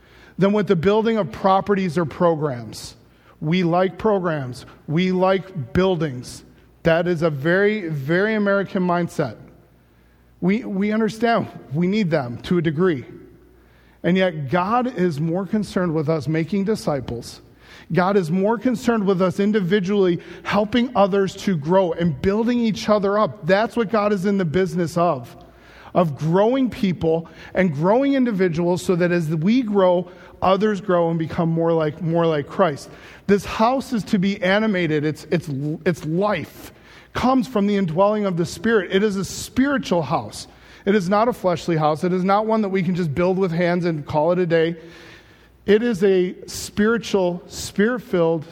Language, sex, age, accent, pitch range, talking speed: English, male, 40-59, American, 165-205 Hz, 165 wpm